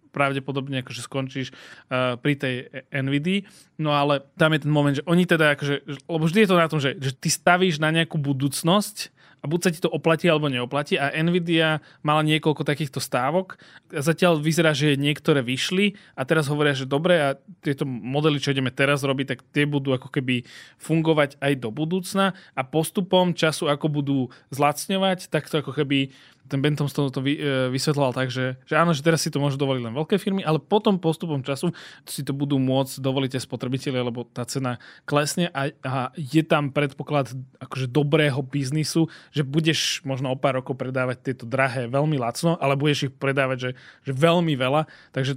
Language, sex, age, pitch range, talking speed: Slovak, male, 20-39, 135-155 Hz, 185 wpm